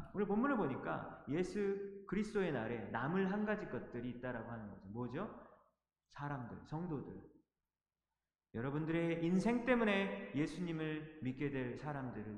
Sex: male